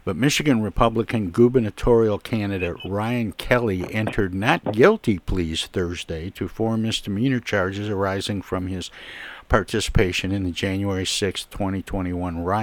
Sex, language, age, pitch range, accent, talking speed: male, English, 60-79, 90-110 Hz, American, 120 wpm